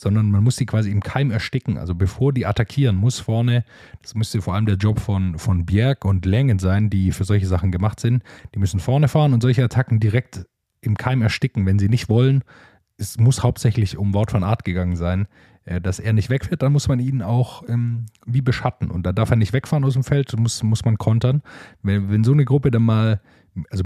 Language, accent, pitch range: German, German, 95-120 Hz